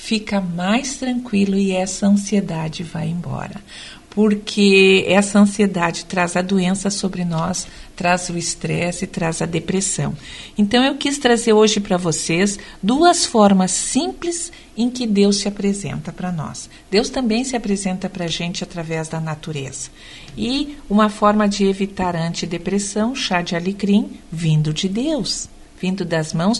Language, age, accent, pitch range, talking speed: Portuguese, 50-69, Brazilian, 175-225 Hz, 145 wpm